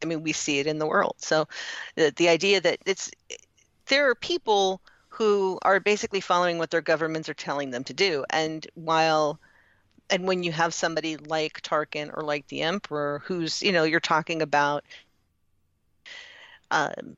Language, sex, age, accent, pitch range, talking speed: English, female, 40-59, American, 155-190 Hz, 170 wpm